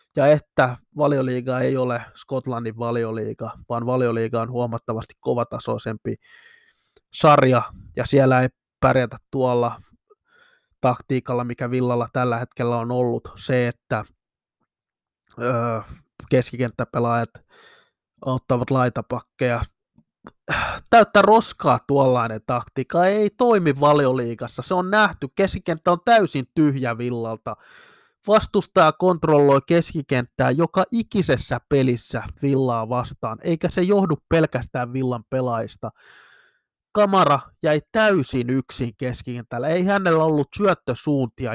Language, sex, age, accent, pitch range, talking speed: Finnish, male, 20-39, native, 125-170 Hz, 100 wpm